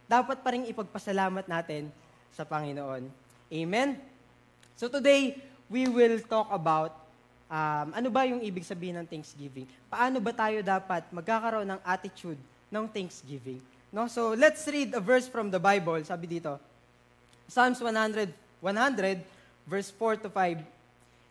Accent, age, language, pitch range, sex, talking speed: Filipino, 20-39, English, 155-225 Hz, female, 135 wpm